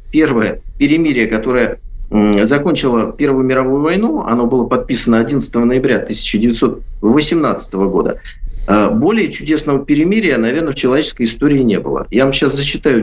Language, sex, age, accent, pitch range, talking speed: Russian, male, 50-69, native, 120-185 Hz, 125 wpm